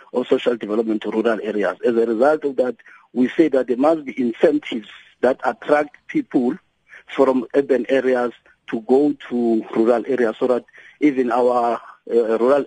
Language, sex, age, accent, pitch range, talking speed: English, male, 50-69, South African, 120-150 Hz, 165 wpm